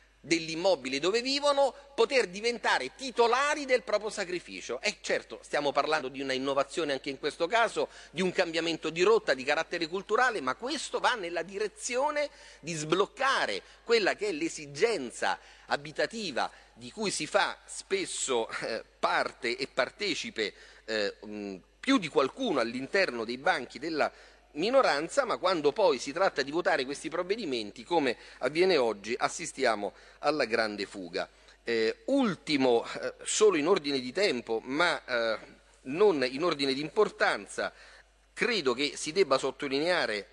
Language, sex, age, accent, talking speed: Italian, male, 30-49, native, 135 wpm